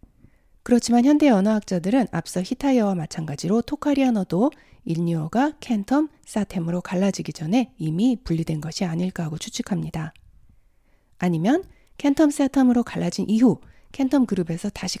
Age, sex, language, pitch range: 40-59, female, Korean, 175-255 Hz